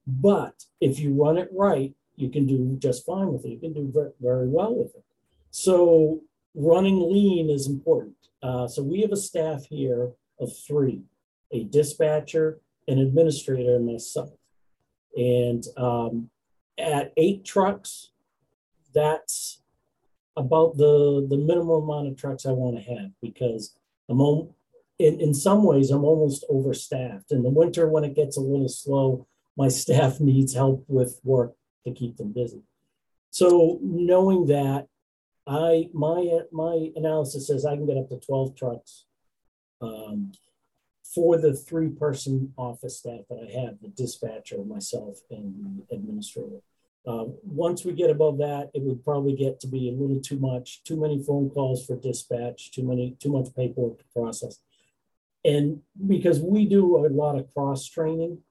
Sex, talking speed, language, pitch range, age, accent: male, 155 wpm, English, 125-160 Hz, 50-69, American